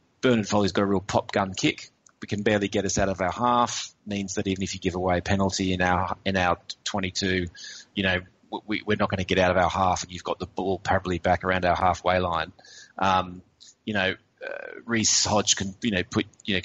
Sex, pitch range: male, 90-105 Hz